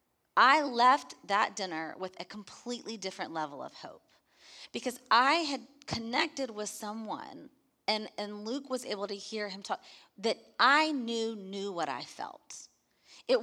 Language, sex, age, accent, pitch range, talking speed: English, female, 30-49, American, 195-255 Hz, 150 wpm